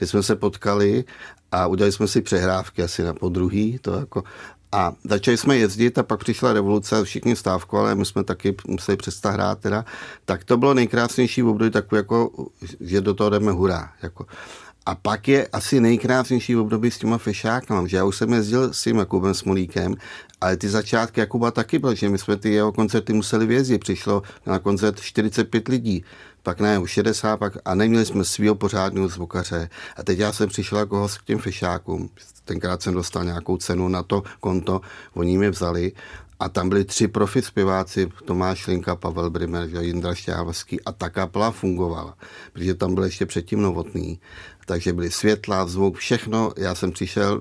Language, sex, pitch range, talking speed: Czech, male, 90-110 Hz, 180 wpm